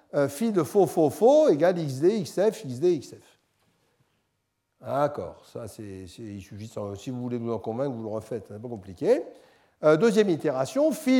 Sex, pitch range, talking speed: male, 125-185 Hz, 170 wpm